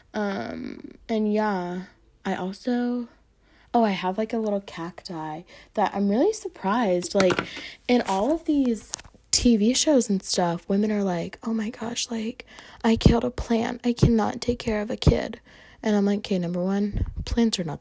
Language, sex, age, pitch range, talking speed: English, female, 20-39, 175-225 Hz, 175 wpm